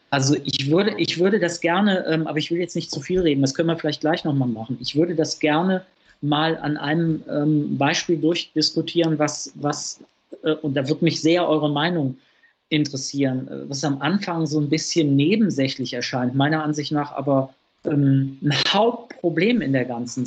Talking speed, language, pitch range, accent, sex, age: 185 wpm, German, 140-170 Hz, German, male, 40-59